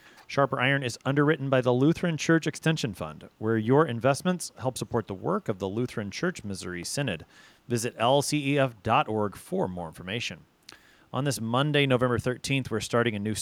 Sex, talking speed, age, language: male, 165 wpm, 30-49, English